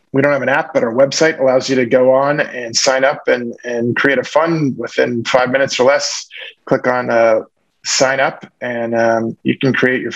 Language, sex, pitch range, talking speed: English, male, 115-135 Hz, 220 wpm